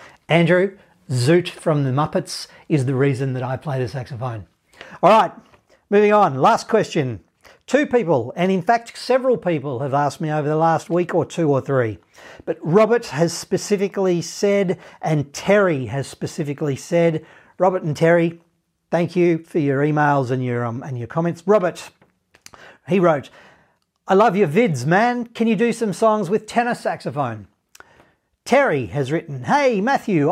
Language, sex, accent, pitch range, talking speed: English, male, Australian, 140-195 Hz, 160 wpm